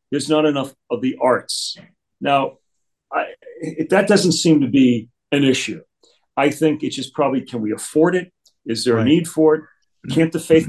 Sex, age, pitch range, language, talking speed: male, 40-59, 120-155 Hz, English, 190 wpm